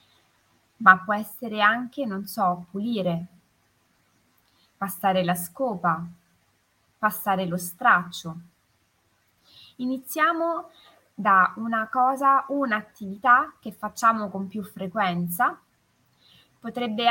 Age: 20-39